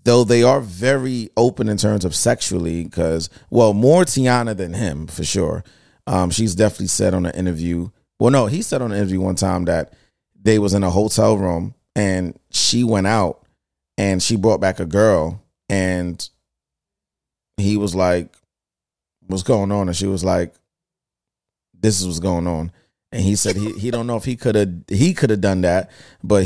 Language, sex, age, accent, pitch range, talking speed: English, male, 30-49, American, 85-110 Hz, 190 wpm